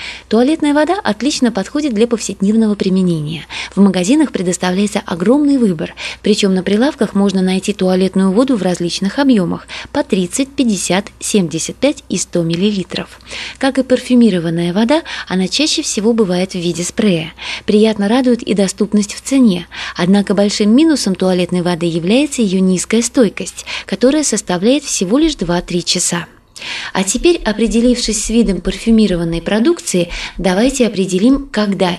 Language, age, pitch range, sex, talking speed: Russian, 20-39, 185-245 Hz, female, 135 wpm